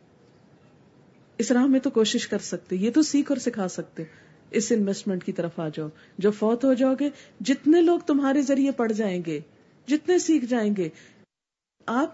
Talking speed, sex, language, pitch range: 180 wpm, female, Urdu, 200-280 Hz